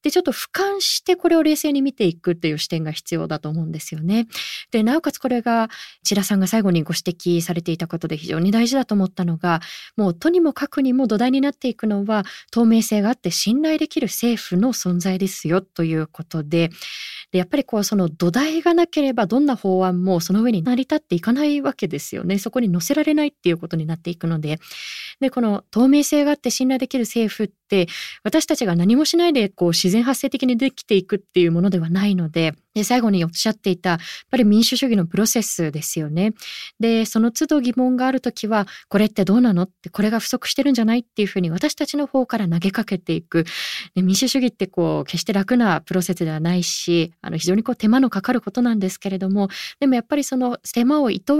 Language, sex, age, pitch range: Japanese, female, 20-39, 180-255 Hz